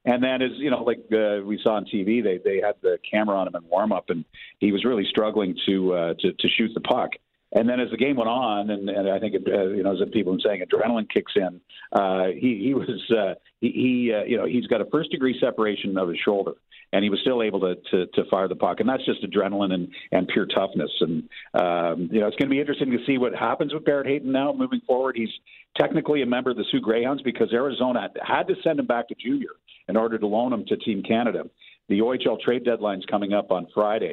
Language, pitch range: English, 100-125 Hz